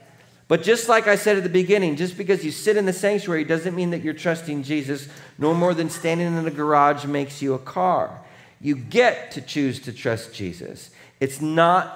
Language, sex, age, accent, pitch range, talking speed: English, male, 40-59, American, 110-160 Hz, 205 wpm